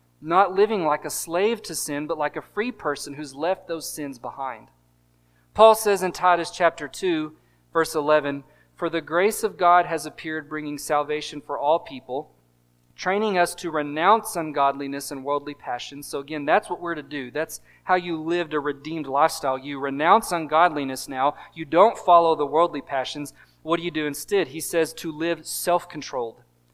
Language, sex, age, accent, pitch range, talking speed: English, male, 40-59, American, 140-175 Hz, 175 wpm